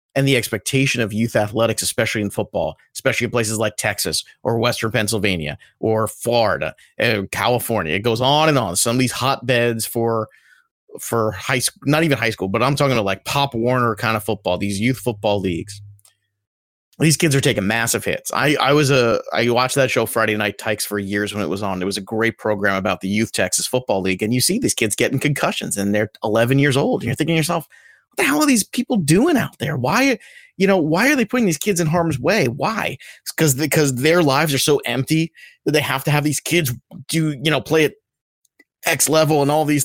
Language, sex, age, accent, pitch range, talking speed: English, male, 30-49, American, 115-155 Hz, 225 wpm